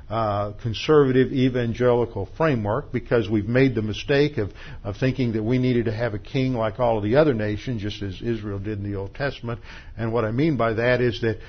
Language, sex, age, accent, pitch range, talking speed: English, male, 60-79, American, 105-125 Hz, 215 wpm